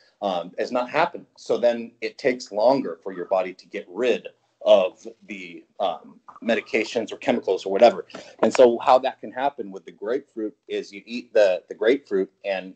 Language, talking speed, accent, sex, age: English, 185 wpm, American, male, 30-49